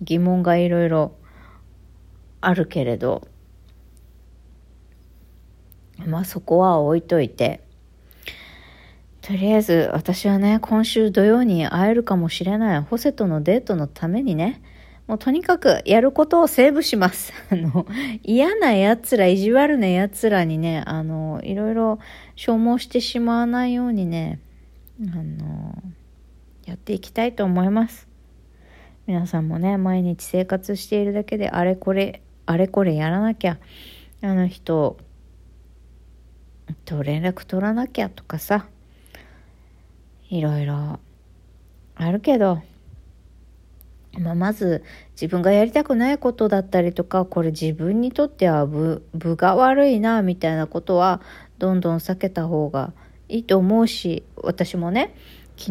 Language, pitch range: Japanese, 160-215 Hz